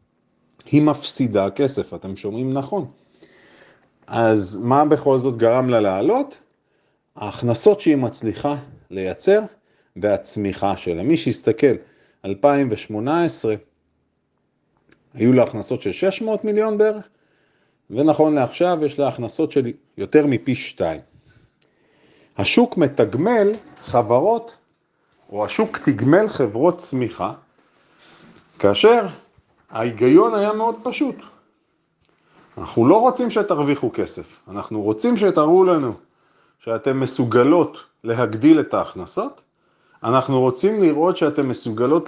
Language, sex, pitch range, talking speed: Hebrew, male, 115-180 Hz, 100 wpm